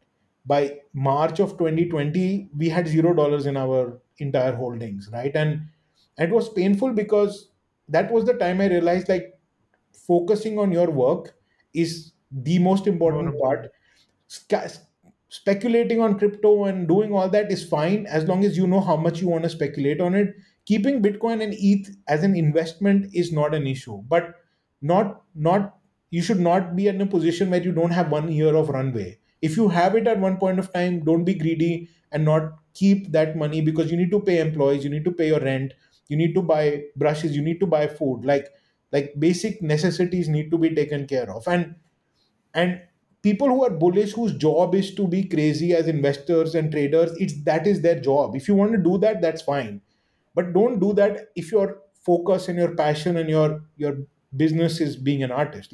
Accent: Indian